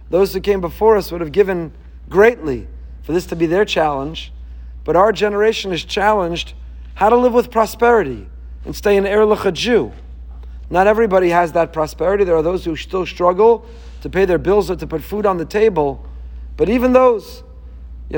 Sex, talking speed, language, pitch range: male, 190 wpm, English, 120-195 Hz